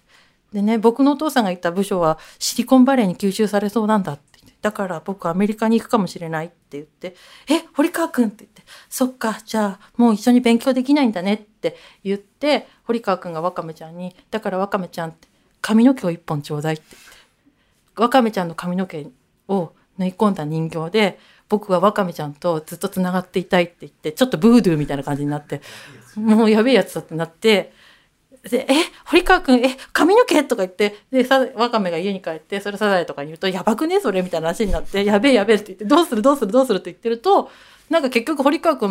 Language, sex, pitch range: Japanese, female, 180-250 Hz